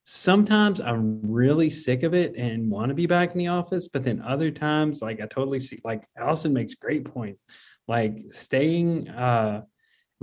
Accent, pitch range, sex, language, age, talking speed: American, 110-140 Hz, male, English, 30-49, 175 wpm